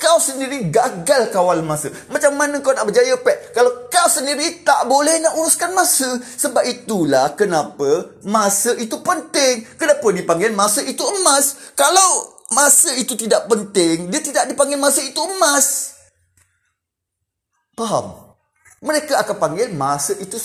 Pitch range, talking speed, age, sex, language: 180-285 Hz, 140 wpm, 20-39, male, Malay